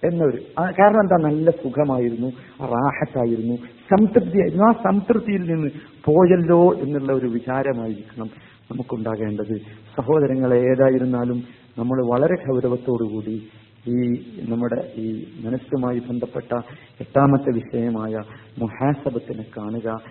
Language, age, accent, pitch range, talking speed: Malayalam, 50-69, native, 115-175 Hz, 95 wpm